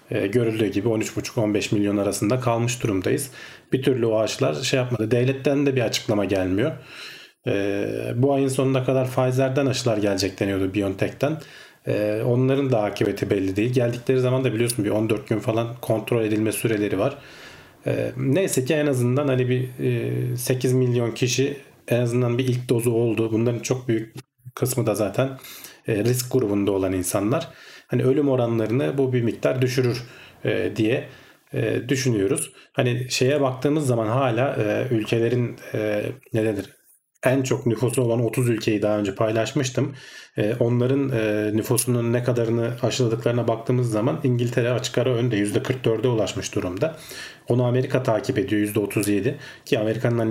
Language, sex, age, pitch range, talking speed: Turkish, male, 40-59, 110-130 Hz, 140 wpm